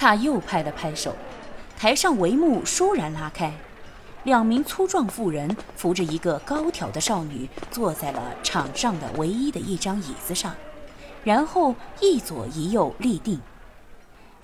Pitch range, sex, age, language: 155-255 Hz, female, 20-39, Chinese